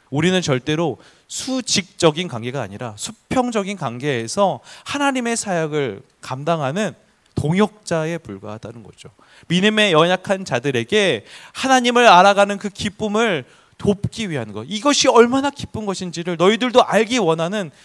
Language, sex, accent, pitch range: Korean, male, native, 125-195 Hz